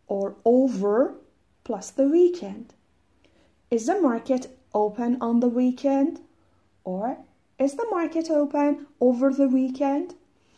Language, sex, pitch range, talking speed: Persian, female, 220-275 Hz, 115 wpm